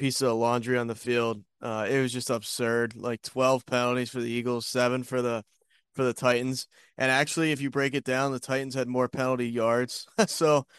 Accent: American